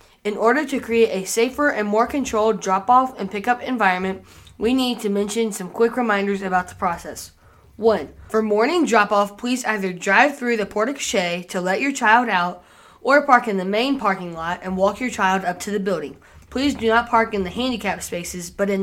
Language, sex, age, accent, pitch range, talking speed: English, female, 20-39, American, 190-235 Hz, 200 wpm